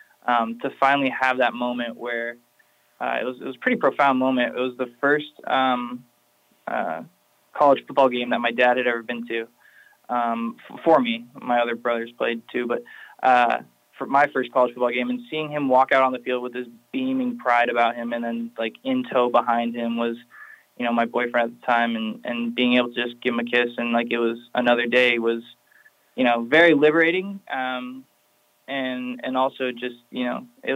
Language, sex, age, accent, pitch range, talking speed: English, male, 20-39, American, 120-130 Hz, 205 wpm